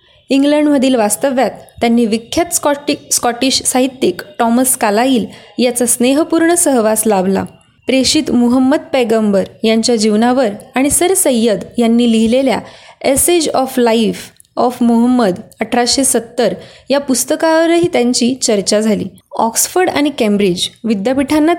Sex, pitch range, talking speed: female, 225-290 Hz, 105 wpm